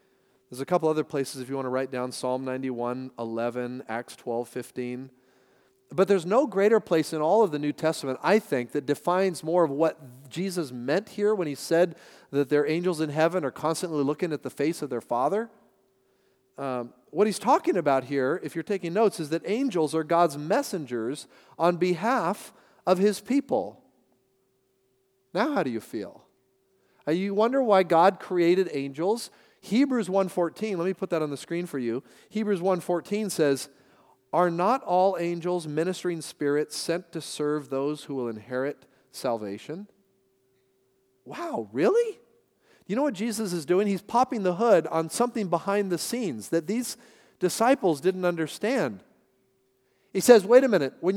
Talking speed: 170 wpm